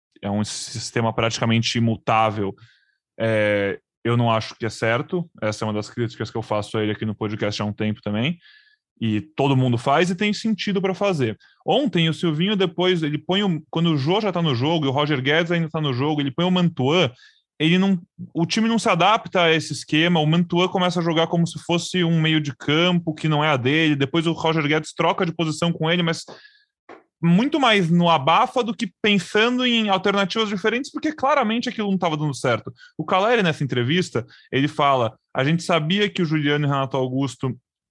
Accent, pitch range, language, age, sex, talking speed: Brazilian, 120-175 Hz, Portuguese, 20-39, male, 210 wpm